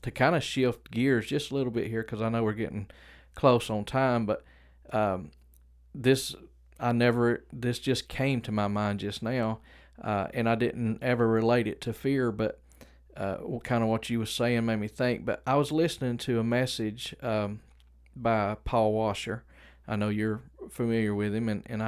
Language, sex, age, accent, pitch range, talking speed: English, male, 40-59, American, 105-125 Hz, 190 wpm